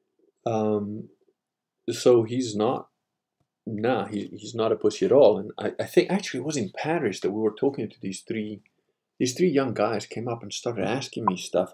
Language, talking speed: English, 195 wpm